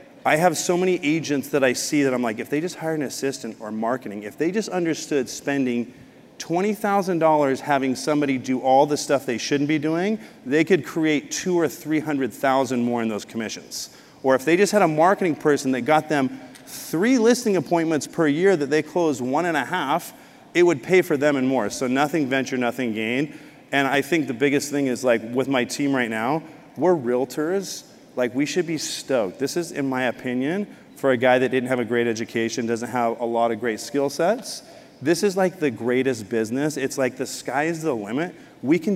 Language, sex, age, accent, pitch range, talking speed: English, male, 40-59, American, 130-160 Hz, 210 wpm